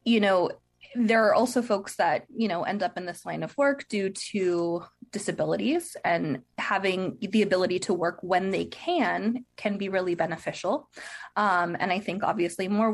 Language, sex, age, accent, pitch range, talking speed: English, female, 20-39, American, 175-225 Hz, 175 wpm